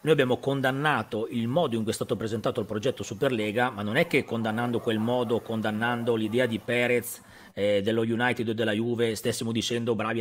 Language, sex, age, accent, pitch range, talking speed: Italian, male, 40-59, native, 110-130 Hz, 195 wpm